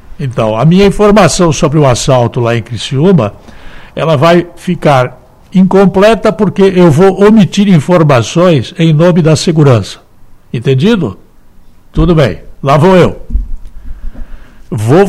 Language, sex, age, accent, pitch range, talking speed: Portuguese, male, 60-79, Brazilian, 120-195 Hz, 120 wpm